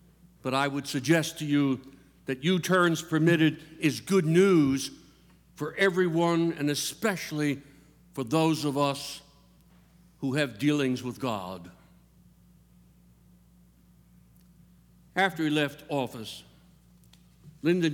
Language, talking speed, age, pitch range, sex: English, 100 wpm, 60-79, 130-170 Hz, male